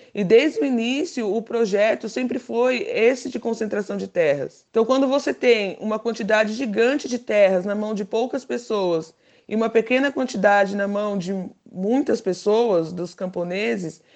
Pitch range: 205-250 Hz